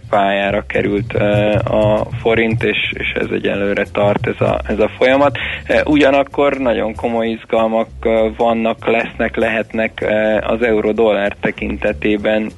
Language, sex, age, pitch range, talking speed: Hungarian, male, 20-39, 105-115 Hz, 140 wpm